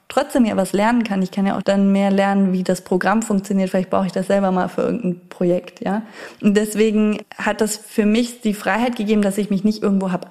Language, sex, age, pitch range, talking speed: German, female, 20-39, 190-215 Hz, 240 wpm